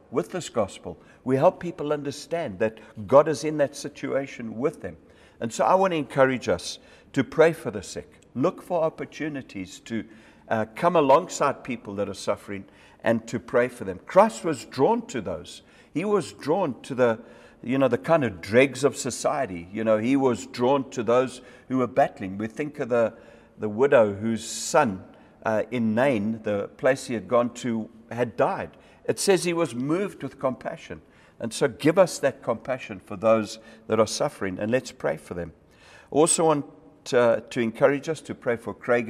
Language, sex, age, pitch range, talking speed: English, male, 60-79, 110-140 Hz, 190 wpm